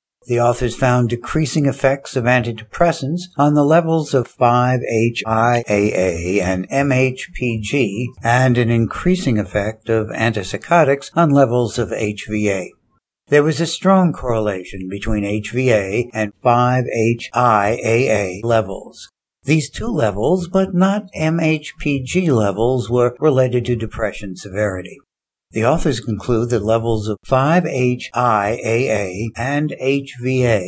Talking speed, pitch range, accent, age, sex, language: 110 wpm, 110-140 Hz, American, 60-79, male, English